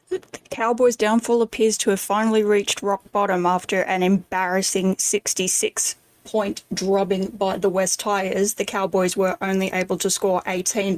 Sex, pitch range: female, 190-225 Hz